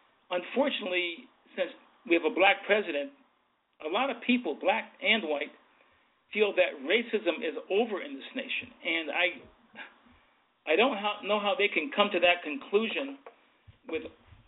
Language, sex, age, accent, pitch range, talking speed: English, male, 50-69, American, 170-255 Hz, 145 wpm